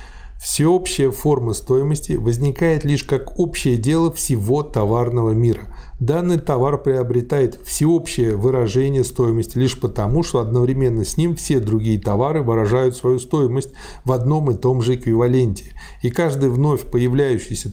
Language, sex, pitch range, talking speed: Russian, male, 115-145 Hz, 130 wpm